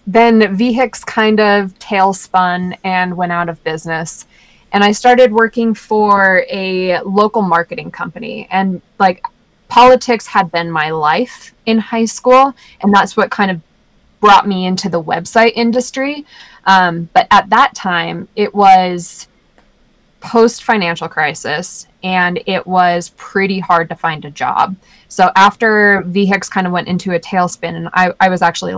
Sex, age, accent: female, 20-39, American